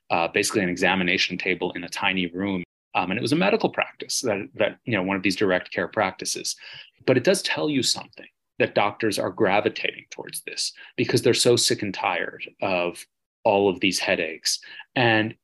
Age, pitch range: 30-49, 95-130 Hz